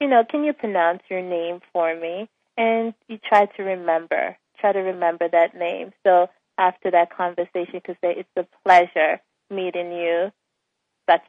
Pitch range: 170-205 Hz